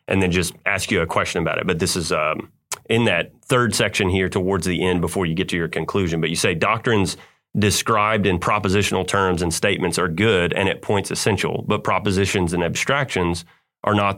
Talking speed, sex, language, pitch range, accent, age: 205 wpm, male, English, 90-105 Hz, American, 30-49